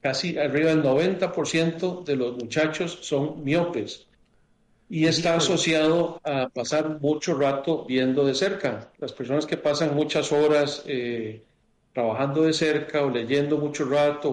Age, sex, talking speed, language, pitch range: 40-59, male, 140 wpm, Spanish, 135-155 Hz